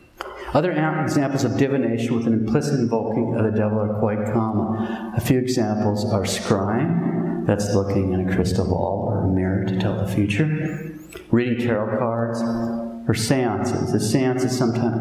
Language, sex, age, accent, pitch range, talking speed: English, male, 40-59, American, 100-120 Hz, 165 wpm